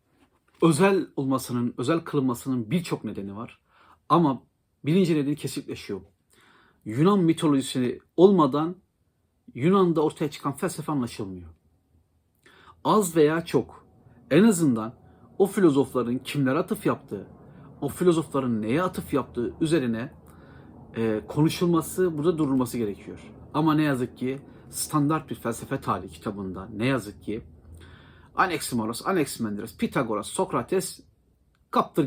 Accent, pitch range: native, 105-155 Hz